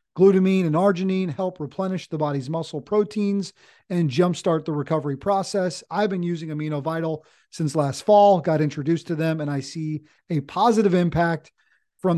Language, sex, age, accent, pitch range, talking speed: English, male, 40-59, American, 150-190 Hz, 165 wpm